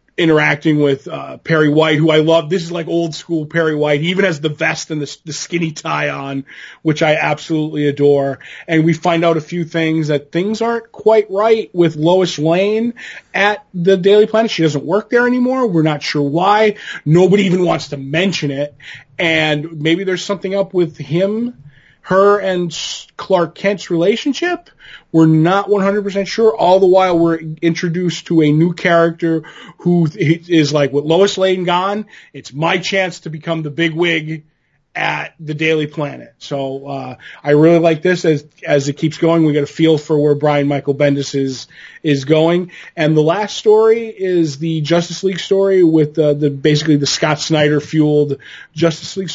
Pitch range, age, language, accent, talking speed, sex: 150-185 Hz, 30-49, English, American, 180 wpm, male